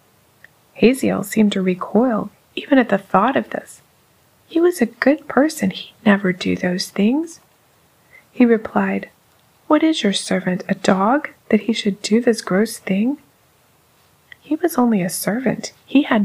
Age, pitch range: 20-39, 195-235 Hz